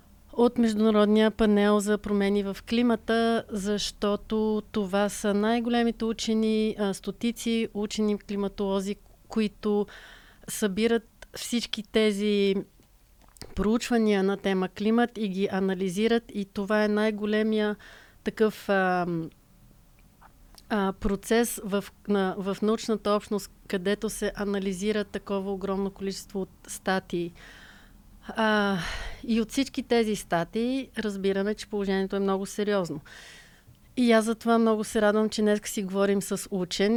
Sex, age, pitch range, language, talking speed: female, 30-49, 195-220 Hz, Bulgarian, 115 wpm